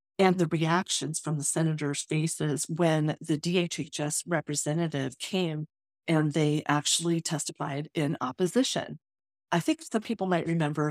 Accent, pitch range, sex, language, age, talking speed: American, 150-185 Hz, female, English, 40-59, 130 wpm